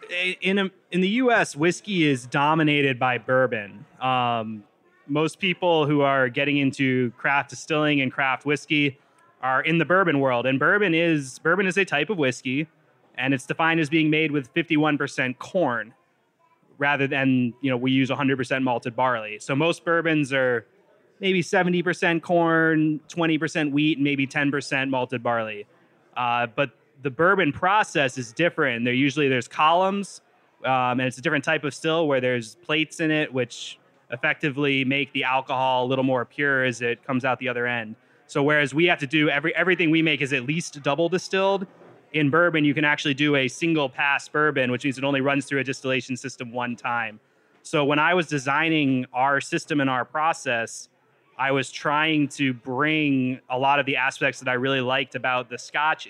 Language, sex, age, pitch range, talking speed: English, male, 20-39, 130-160 Hz, 190 wpm